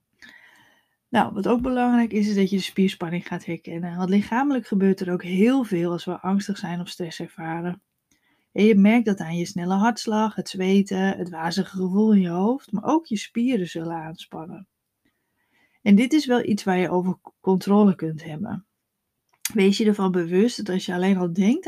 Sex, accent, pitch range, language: female, Dutch, 180-215 Hz, Dutch